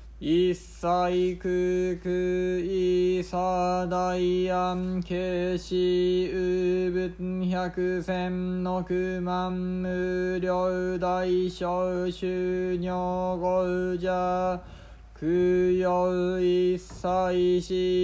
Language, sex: Japanese, male